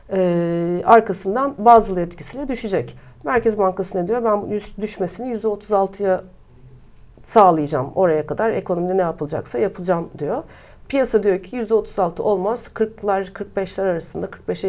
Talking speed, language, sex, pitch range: 125 wpm, Turkish, female, 175-210 Hz